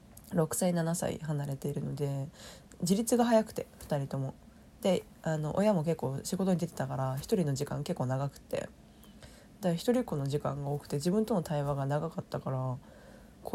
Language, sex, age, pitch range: Japanese, female, 20-39, 145-215 Hz